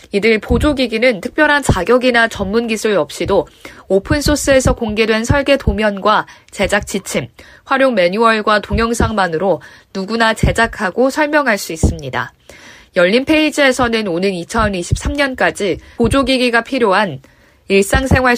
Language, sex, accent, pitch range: Korean, female, native, 200-265 Hz